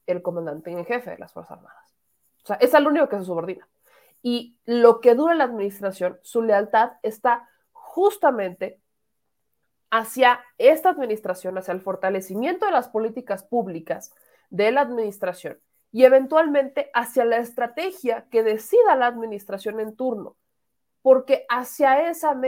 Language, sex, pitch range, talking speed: Spanish, female, 200-265 Hz, 140 wpm